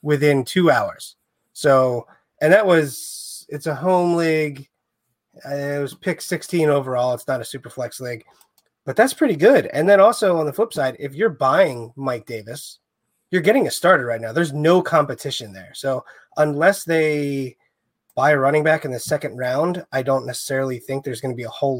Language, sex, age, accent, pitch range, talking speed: English, male, 30-49, American, 125-155 Hz, 190 wpm